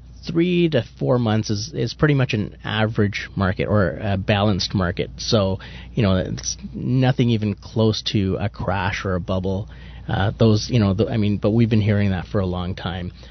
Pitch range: 100-125 Hz